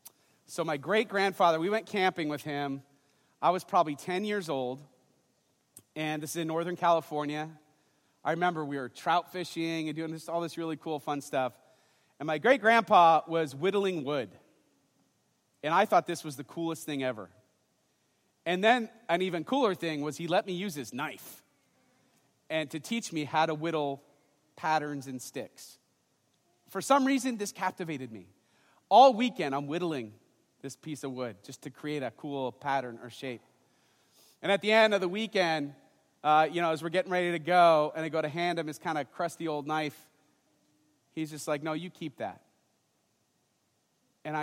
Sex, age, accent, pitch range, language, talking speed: male, 40-59, American, 145-180 Hz, English, 175 wpm